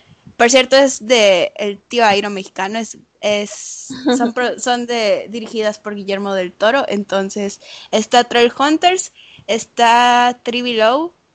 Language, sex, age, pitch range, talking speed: Spanish, female, 10-29, 215-285 Hz, 130 wpm